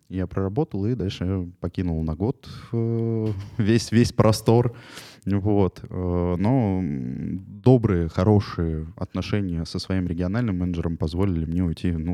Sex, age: male, 20-39